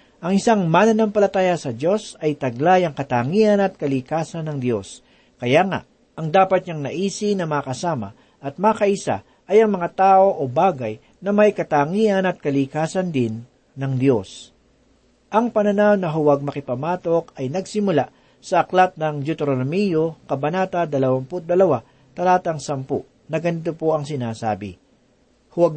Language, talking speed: Filipino, 135 wpm